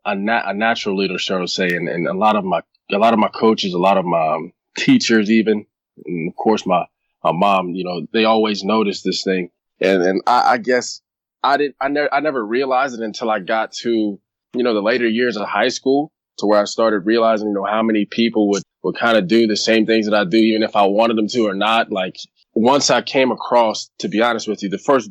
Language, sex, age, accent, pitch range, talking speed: English, male, 20-39, American, 100-115 Hz, 255 wpm